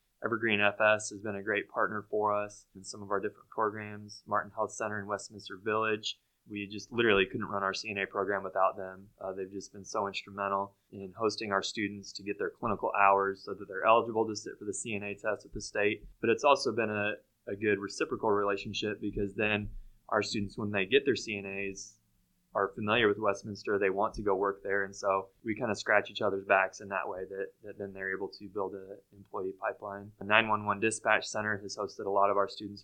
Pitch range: 100-105 Hz